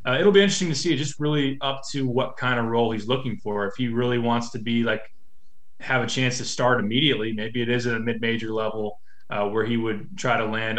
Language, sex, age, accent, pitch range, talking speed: English, male, 20-39, American, 110-130 Hz, 250 wpm